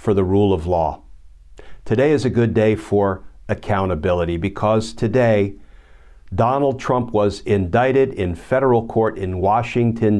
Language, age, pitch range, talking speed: English, 50-69, 90-120 Hz, 135 wpm